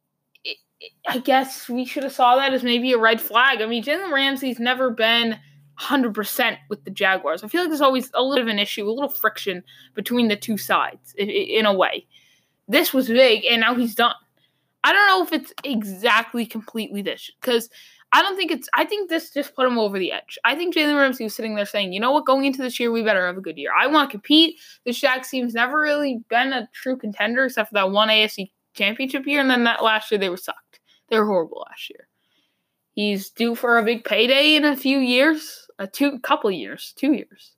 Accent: American